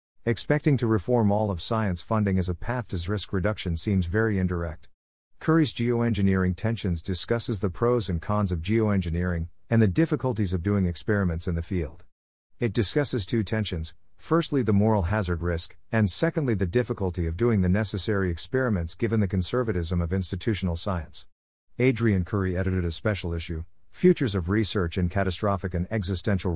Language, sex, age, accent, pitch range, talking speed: English, male, 50-69, American, 90-110 Hz, 165 wpm